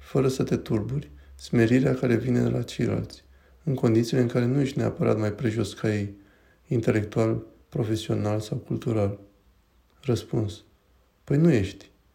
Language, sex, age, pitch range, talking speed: Romanian, male, 20-39, 105-125 Hz, 145 wpm